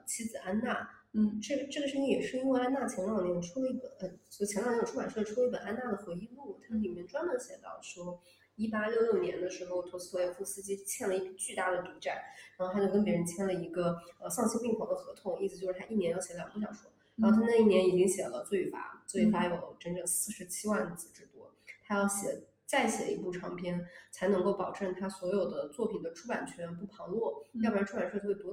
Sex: female